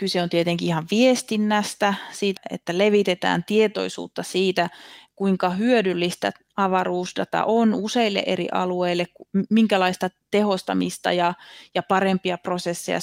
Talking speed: 105 wpm